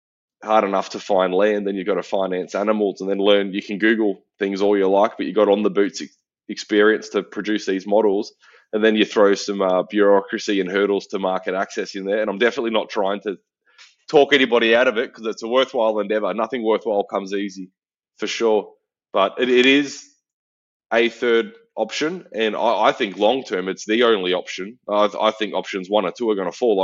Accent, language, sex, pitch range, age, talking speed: Australian, English, male, 100-115 Hz, 20-39, 215 wpm